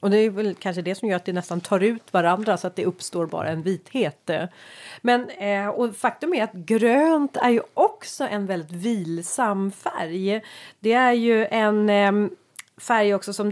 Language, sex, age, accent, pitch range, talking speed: Swedish, female, 30-49, native, 180-220 Hz, 180 wpm